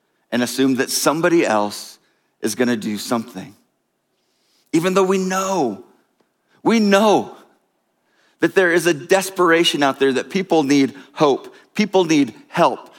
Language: English